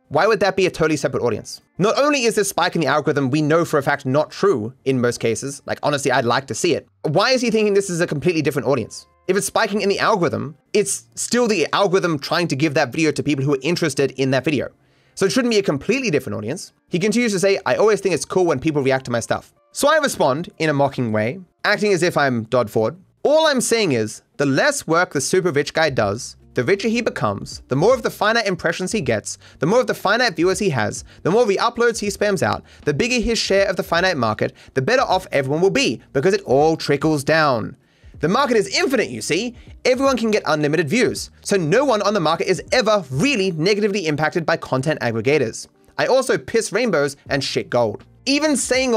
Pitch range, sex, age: 140-210 Hz, male, 30-49